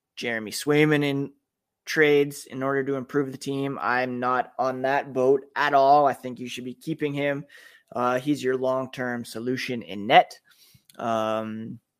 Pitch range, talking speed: 125-150 Hz, 160 wpm